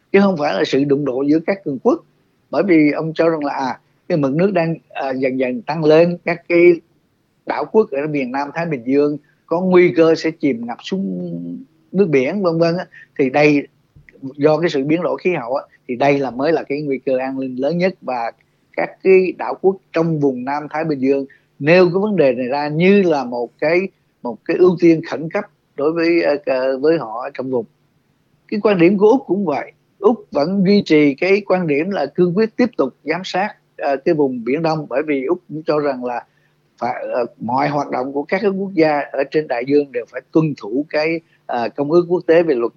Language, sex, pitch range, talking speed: Vietnamese, male, 135-175 Hz, 220 wpm